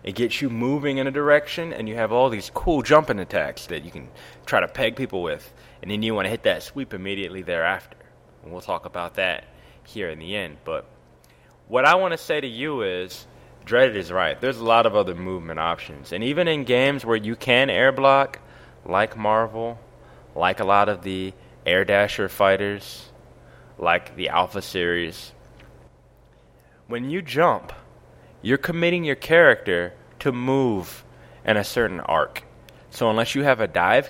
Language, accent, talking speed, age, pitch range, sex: English, American, 180 wpm, 20-39, 100-140 Hz, male